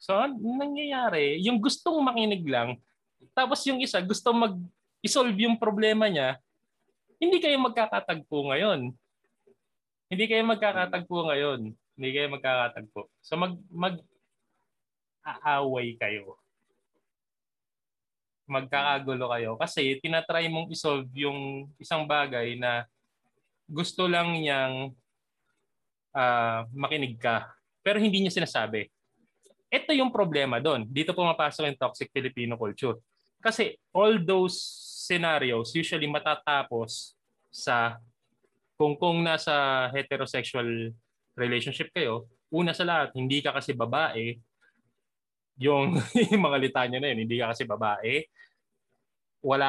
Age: 20-39